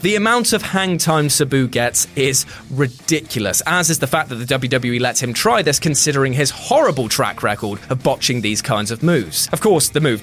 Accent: British